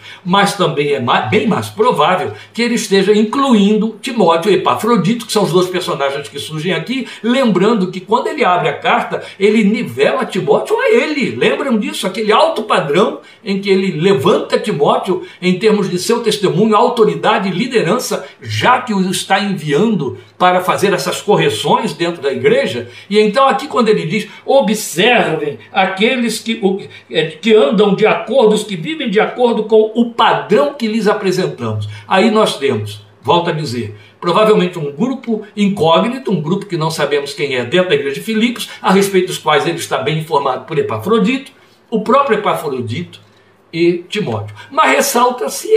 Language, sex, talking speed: Portuguese, male, 165 wpm